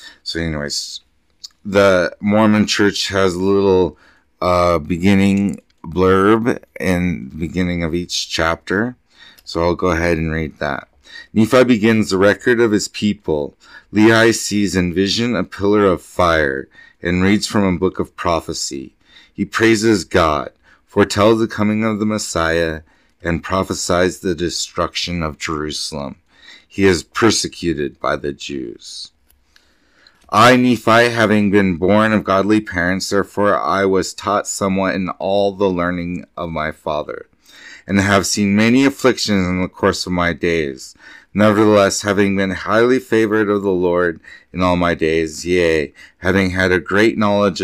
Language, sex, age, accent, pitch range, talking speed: English, male, 30-49, American, 85-105 Hz, 145 wpm